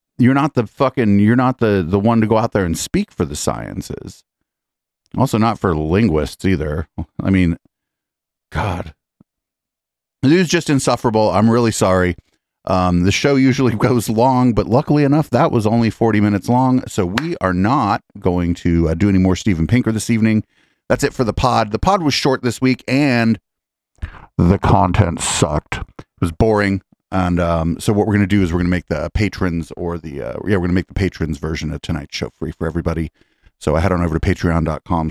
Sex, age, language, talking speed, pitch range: male, 40-59, English, 200 wpm, 85-115 Hz